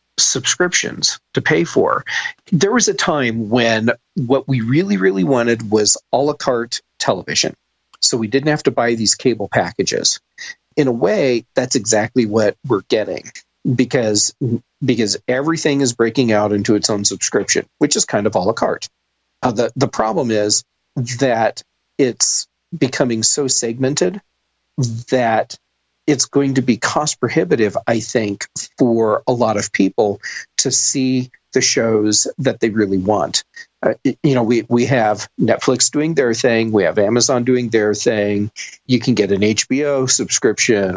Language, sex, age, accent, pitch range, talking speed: English, male, 40-59, American, 105-130 Hz, 155 wpm